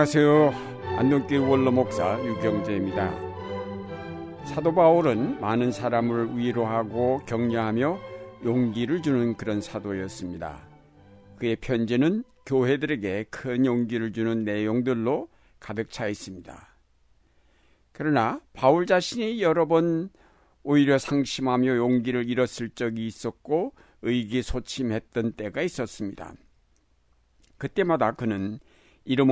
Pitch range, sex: 105-135 Hz, male